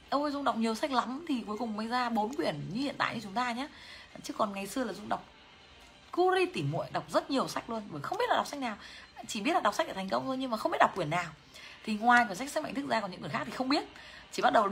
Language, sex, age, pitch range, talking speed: Vietnamese, female, 20-39, 165-275 Hz, 315 wpm